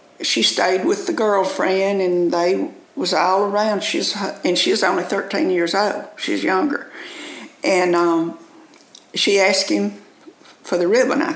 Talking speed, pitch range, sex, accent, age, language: 150 wpm, 200-325 Hz, female, American, 50-69, English